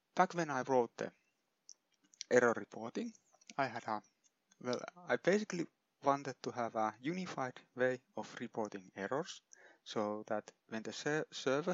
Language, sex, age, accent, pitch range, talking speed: English, male, 30-49, Finnish, 115-150 Hz, 140 wpm